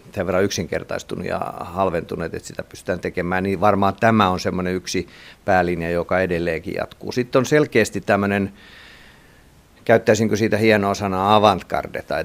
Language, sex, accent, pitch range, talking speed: Finnish, male, native, 90-105 Hz, 140 wpm